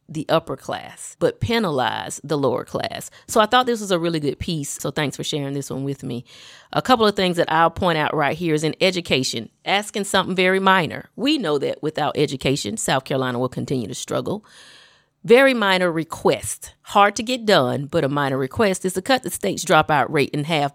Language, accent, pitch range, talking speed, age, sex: English, American, 145-200 Hz, 210 wpm, 30-49, female